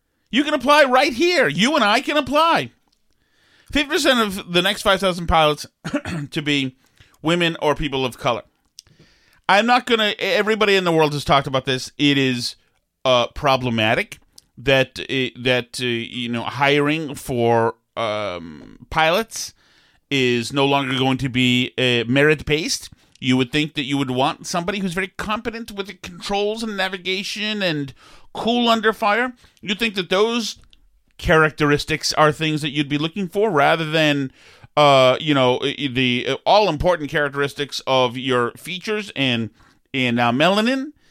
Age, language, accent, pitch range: 40-59, English, American, 130-190 Hz